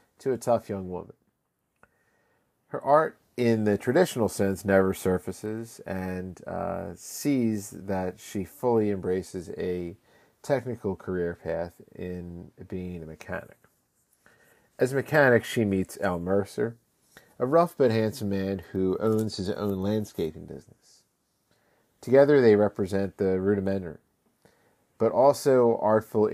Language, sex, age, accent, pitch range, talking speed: English, male, 40-59, American, 90-115 Hz, 125 wpm